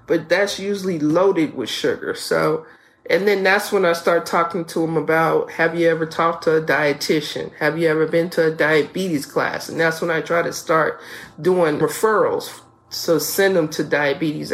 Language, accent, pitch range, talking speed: English, American, 155-185 Hz, 190 wpm